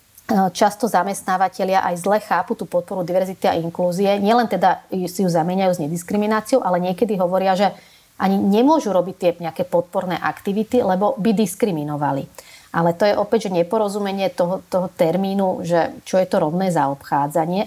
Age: 30-49